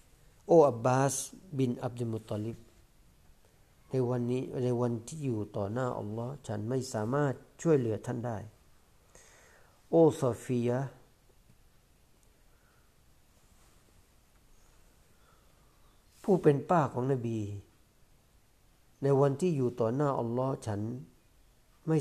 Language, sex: Thai, male